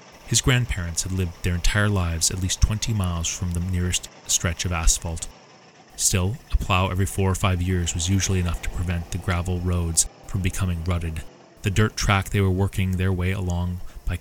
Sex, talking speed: male, 195 wpm